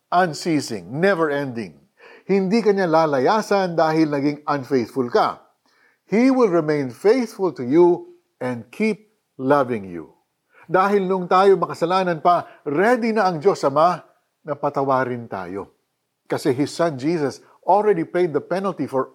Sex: male